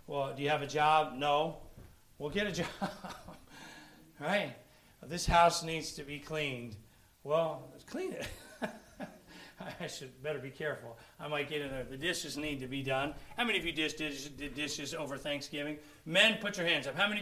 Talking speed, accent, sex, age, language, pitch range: 200 wpm, American, male, 40-59, English, 145-190 Hz